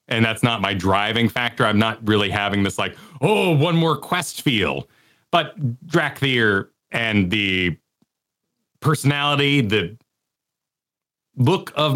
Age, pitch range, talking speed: 30-49, 105-155 Hz, 125 wpm